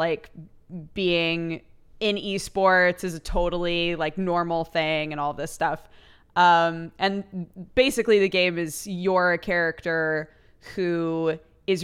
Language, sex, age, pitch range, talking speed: English, female, 20-39, 165-195 Hz, 125 wpm